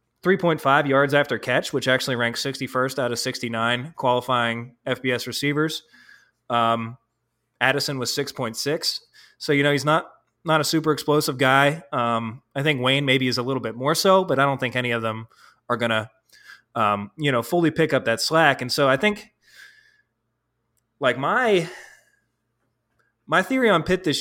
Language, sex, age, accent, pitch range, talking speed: English, male, 20-39, American, 120-155 Hz, 170 wpm